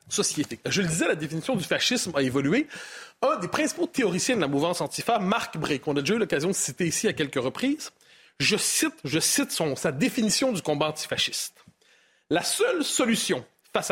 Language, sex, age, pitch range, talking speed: French, male, 30-49, 165-260 Hz, 200 wpm